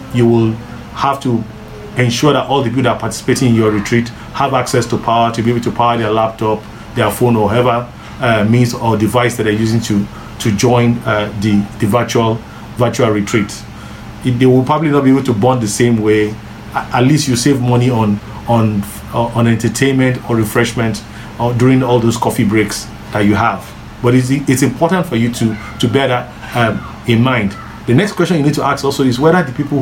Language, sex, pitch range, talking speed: English, male, 110-130 Hz, 200 wpm